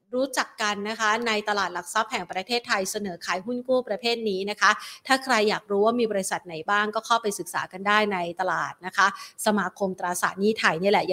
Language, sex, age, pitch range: Thai, female, 30-49, 200-240 Hz